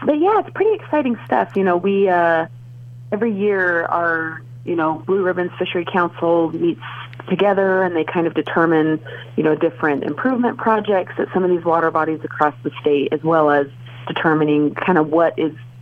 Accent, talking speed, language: American, 180 wpm, English